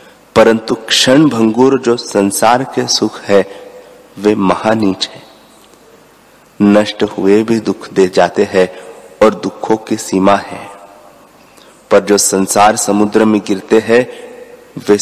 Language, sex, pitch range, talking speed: Hindi, male, 105-125 Hz, 125 wpm